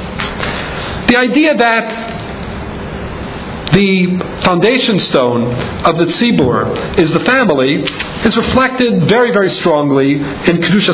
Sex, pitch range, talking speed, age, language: male, 175-220 Hz, 105 wpm, 50-69, English